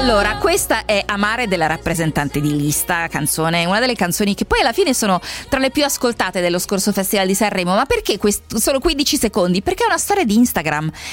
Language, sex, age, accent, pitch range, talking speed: Italian, female, 20-39, native, 170-225 Hz, 200 wpm